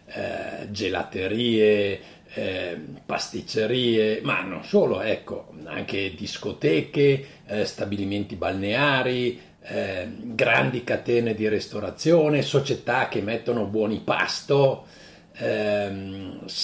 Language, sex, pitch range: Italian, male, 115-180 Hz